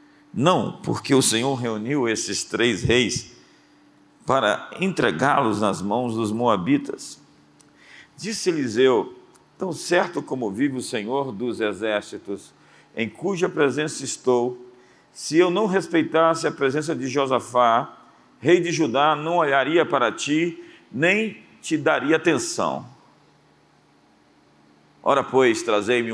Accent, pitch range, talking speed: Brazilian, 115-165 Hz, 115 wpm